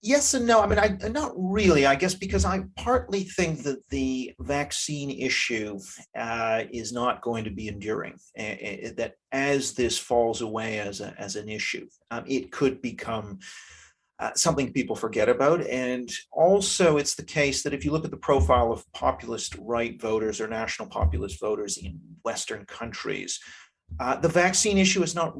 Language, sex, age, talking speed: English, male, 40-59, 175 wpm